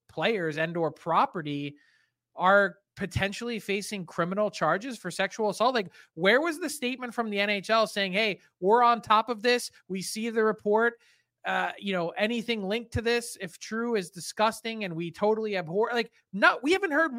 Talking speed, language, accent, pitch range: 180 wpm, English, American, 175-225 Hz